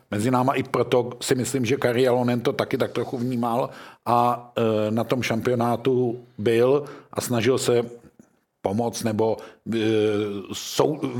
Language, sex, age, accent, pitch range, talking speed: Czech, male, 50-69, native, 120-135 Hz, 135 wpm